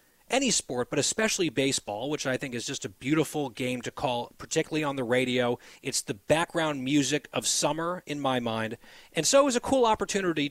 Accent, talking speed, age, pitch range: American, 200 wpm, 30-49, 130-185 Hz